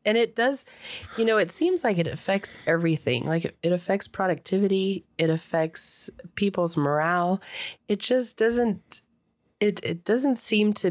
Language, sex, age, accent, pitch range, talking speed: English, female, 30-49, American, 155-185 Hz, 150 wpm